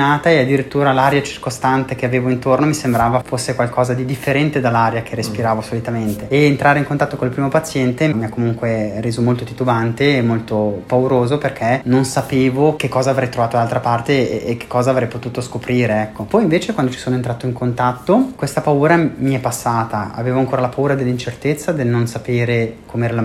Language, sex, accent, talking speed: Italian, male, native, 190 wpm